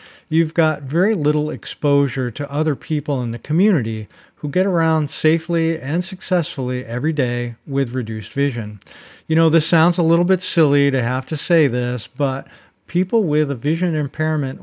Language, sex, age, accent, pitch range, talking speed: English, male, 50-69, American, 125-160 Hz, 170 wpm